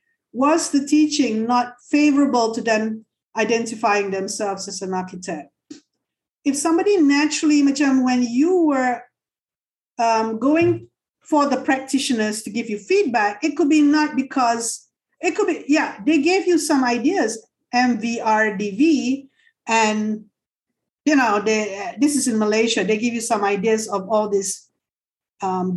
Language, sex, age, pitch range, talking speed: English, female, 50-69, 215-290 Hz, 140 wpm